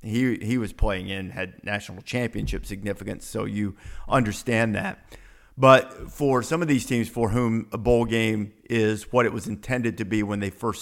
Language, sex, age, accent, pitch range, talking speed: English, male, 50-69, American, 110-130 Hz, 190 wpm